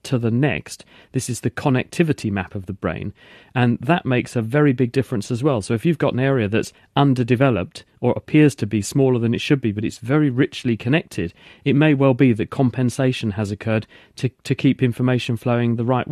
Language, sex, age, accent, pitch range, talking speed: English, male, 40-59, British, 115-135 Hz, 210 wpm